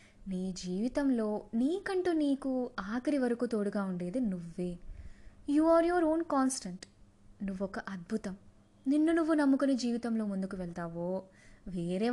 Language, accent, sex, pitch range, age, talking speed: Telugu, native, female, 185-285 Hz, 20-39, 110 wpm